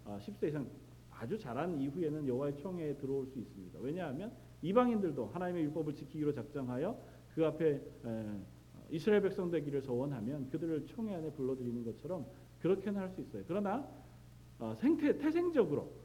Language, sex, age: Korean, male, 40-59